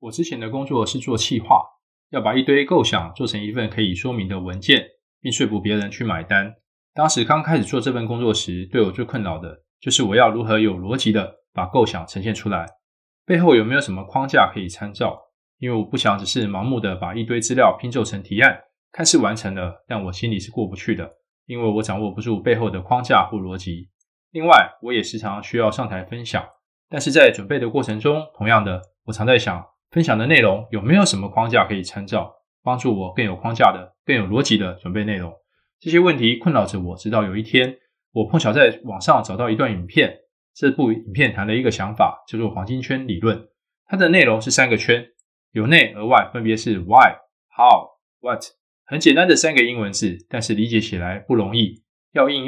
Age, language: 20-39, Chinese